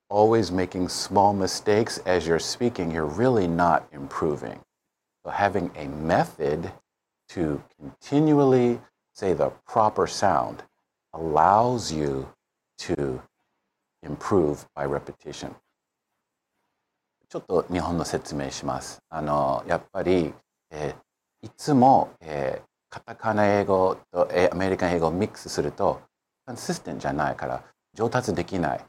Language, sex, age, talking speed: English, male, 50-69, 55 wpm